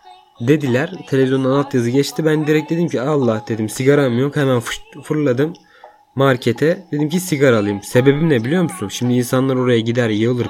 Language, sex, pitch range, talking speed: Turkish, male, 120-180 Hz, 160 wpm